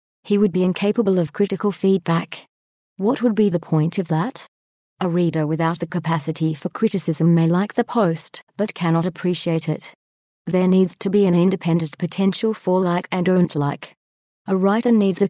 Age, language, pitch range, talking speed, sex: 30-49, English, 165-205 Hz, 180 wpm, female